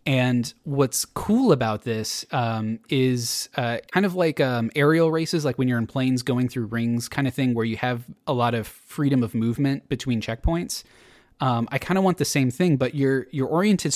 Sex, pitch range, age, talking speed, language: male, 115-140 Hz, 20-39, 205 wpm, English